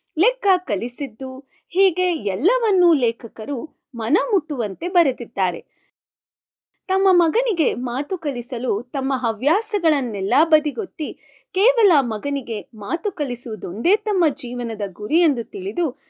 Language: Kannada